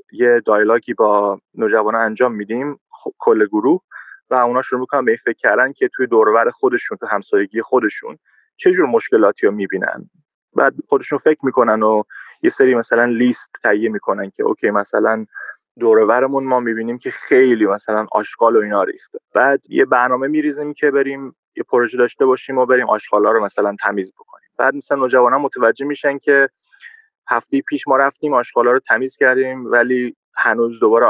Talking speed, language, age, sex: 165 wpm, Persian, 20-39, male